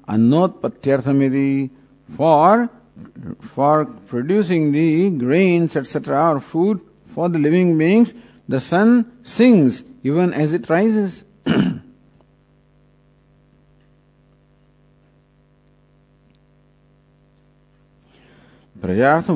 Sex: male